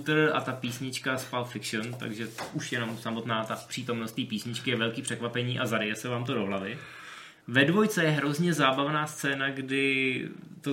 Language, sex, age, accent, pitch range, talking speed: Czech, male, 20-39, native, 120-150 Hz, 185 wpm